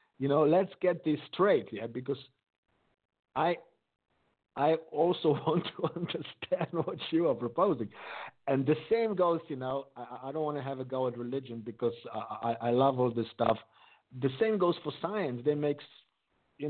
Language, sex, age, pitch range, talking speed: English, male, 50-69, 120-150 Hz, 180 wpm